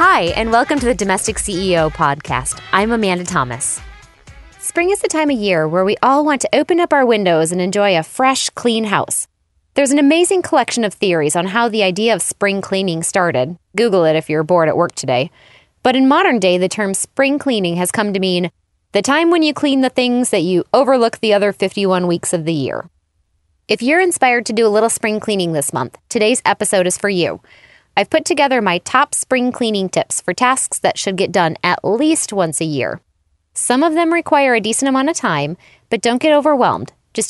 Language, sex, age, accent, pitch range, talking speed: English, female, 20-39, American, 180-255 Hz, 210 wpm